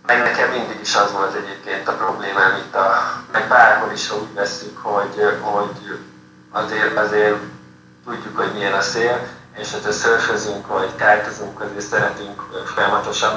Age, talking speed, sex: 20-39, 145 wpm, male